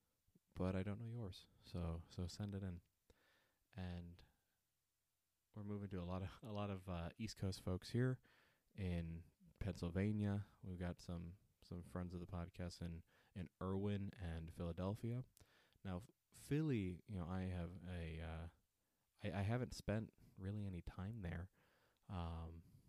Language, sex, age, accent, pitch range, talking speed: English, male, 20-39, American, 85-100 Hz, 150 wpm